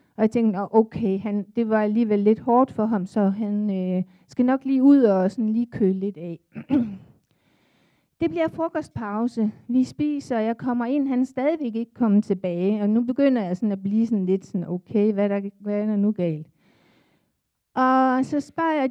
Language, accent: Danish, native